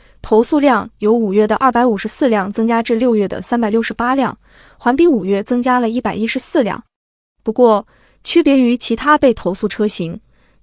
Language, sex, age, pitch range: Chinese, female, 20-39, 215-265 Hz